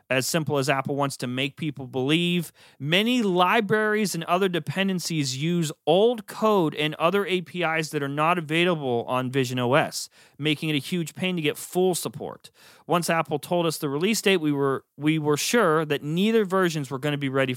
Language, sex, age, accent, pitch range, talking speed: English, male, 30-49, American, 145-185 Hz, 190 wpm